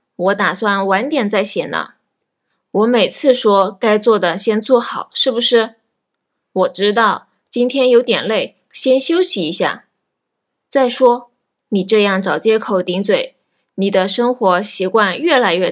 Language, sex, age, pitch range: Japanese, female, 20-39, 195-255 Hz